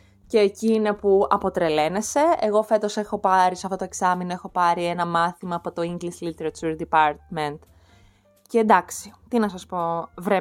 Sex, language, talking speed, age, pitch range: female, Greek, 165 wpm, 20-39, 165-225 Hz